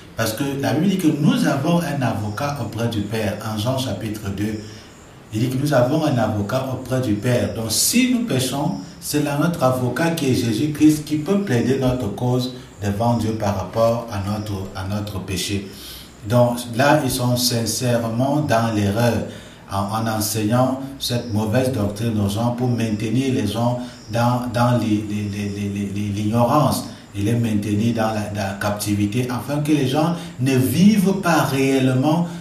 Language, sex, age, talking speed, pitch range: French, male, 60-79, 160 wpm, 110-135 Hz